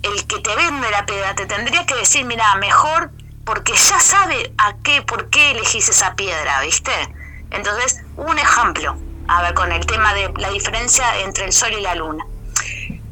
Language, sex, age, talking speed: Spanish, female, 20-39, 185 wpm